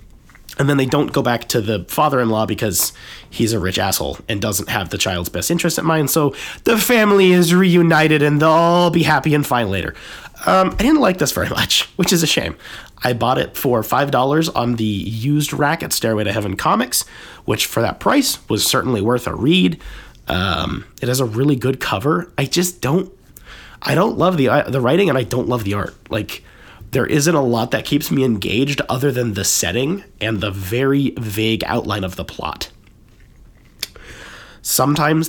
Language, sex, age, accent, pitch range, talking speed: English, male, 30-49, American, 105-145 Hz, 195 wpm